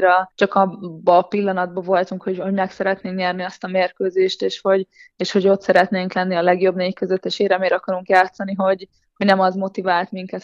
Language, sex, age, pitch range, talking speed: Hungarian, female, 20-39, 180-195 Hz, 195 wpm